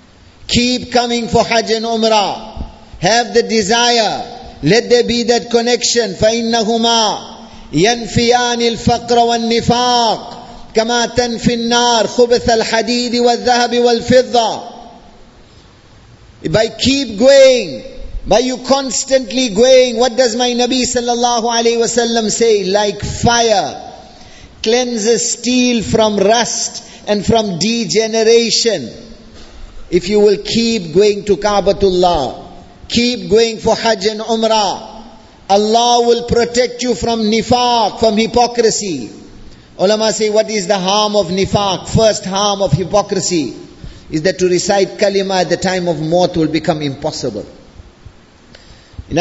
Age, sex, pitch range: 50-69, male, 195-235 Hz